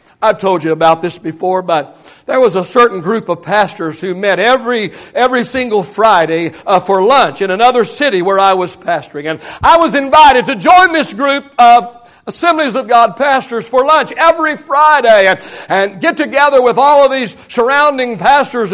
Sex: male